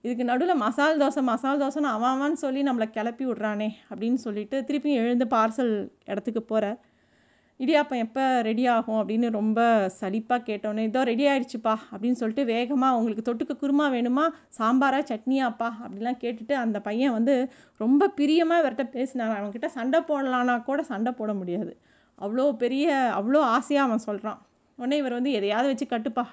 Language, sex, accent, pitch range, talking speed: Tamil, female, native, 220-275 Hz, 150 wpm